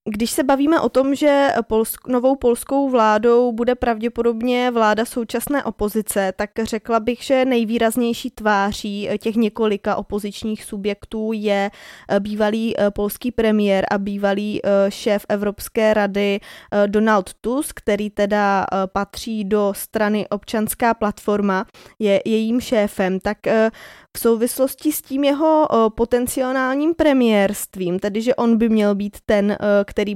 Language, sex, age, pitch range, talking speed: Czech, female, 20-39, 210-250 Hz, 120 wpm